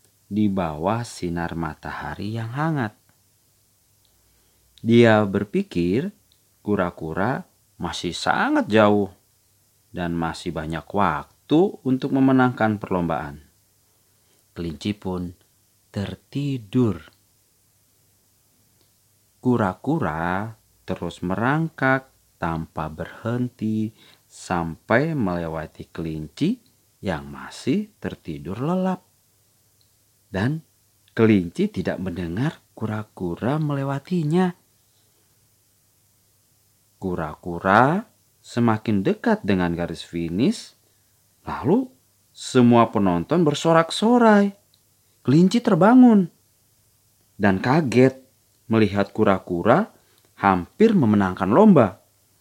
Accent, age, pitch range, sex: native, 40-59, 95-125 Hz, male